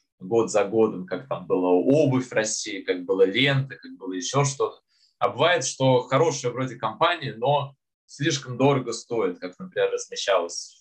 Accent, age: native, 20-39